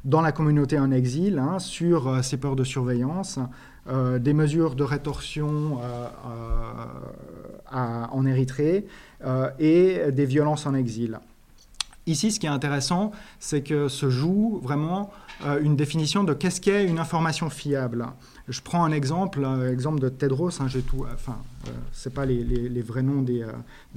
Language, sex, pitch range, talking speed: French, male, 130-160 Hz, 170 wpm